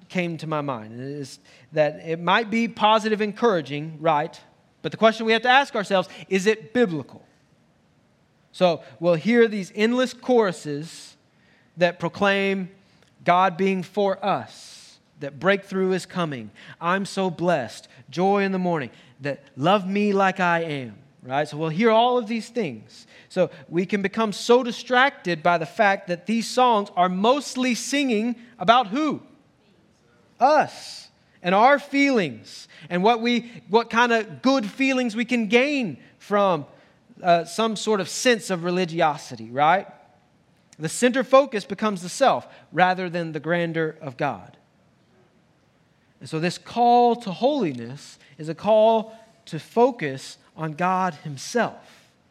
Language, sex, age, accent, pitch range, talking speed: English, male, 30-49, American, 165-230 Hz, 145 wpm